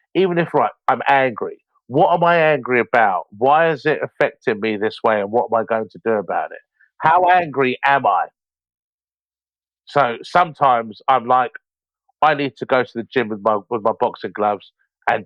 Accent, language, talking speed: British, English, 190 wpm